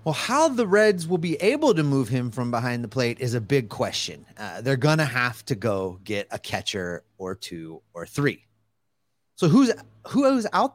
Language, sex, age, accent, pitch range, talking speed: English, male, 30-49, American, 115-155 Hz, 195 wpm